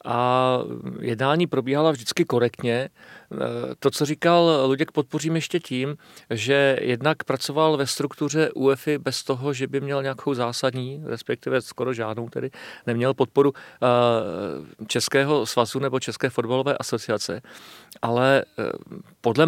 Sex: male